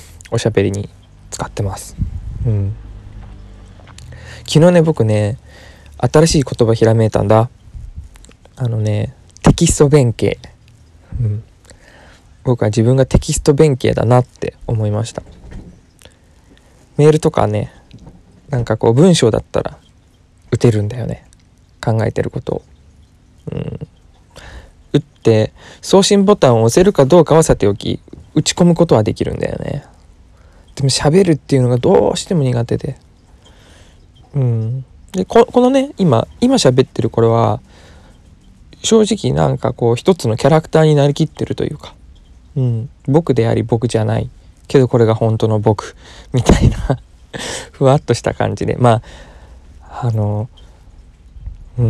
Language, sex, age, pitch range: Japanese, male, 20-39, 95-140 Hz